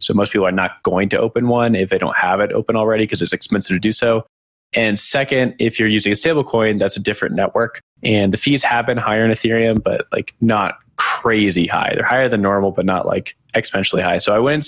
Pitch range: 95-115 Hz